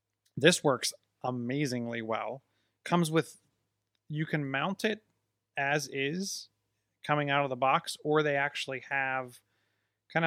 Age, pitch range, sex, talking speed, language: 30-49, 120-145 Hz, male, 130 wpm, English